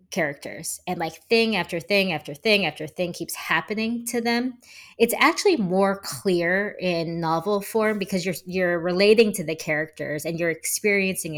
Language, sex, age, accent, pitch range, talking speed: English, female, 20-39, American, 155-195 Hz, 165 wpm